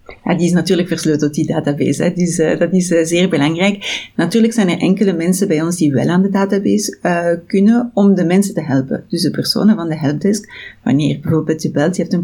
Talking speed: 235 wpm